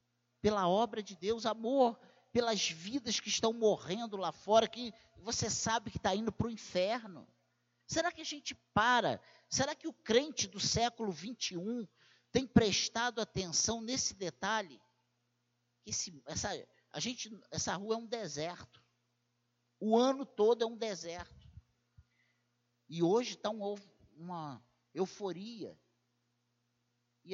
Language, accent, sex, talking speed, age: Portuguese, Brazilian, male, 130 wpm, 50-69